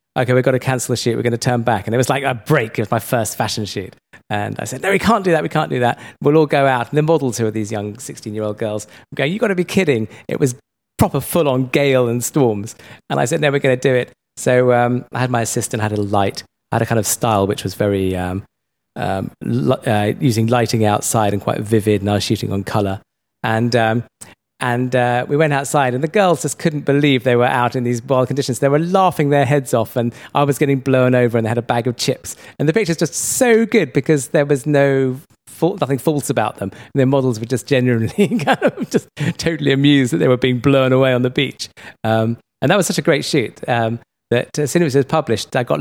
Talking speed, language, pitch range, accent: 250 wpm, English, 115-145 Hz, British